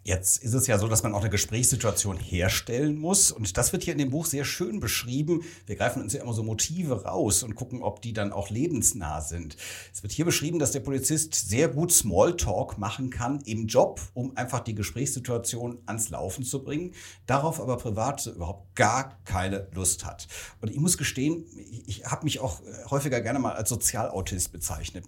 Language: German